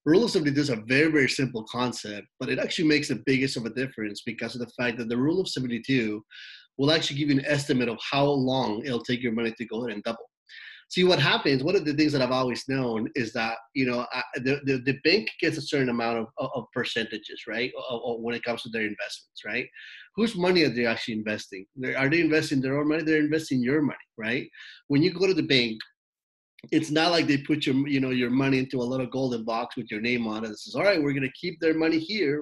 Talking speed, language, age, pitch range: 245 wpm, English, 30-49, 120-145 Hz